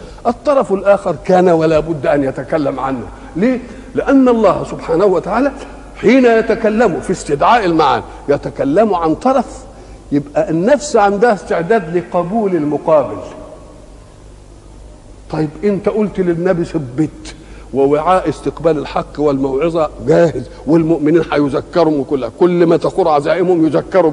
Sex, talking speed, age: male, 110 wpm, 50-69